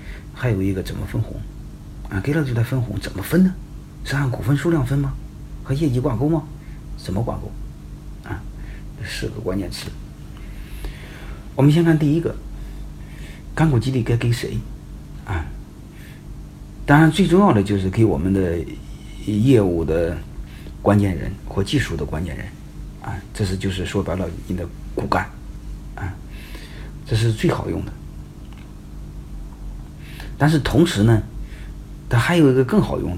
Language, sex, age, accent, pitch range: Chinese, male, 50-69, native, 90-130 Hz